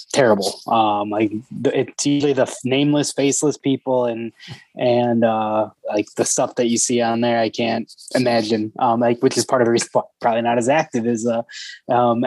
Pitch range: 120-145 Hz